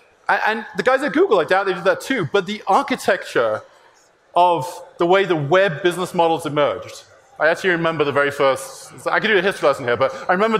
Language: English